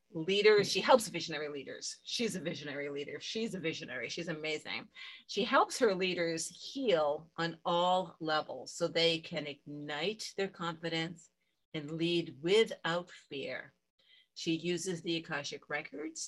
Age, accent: 50-69, American